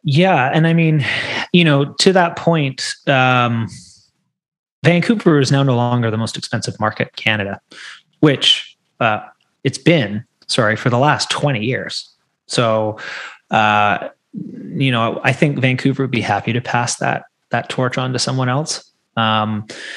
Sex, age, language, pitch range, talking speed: male, 30-49, English, 120-170 Hz, 155 wpm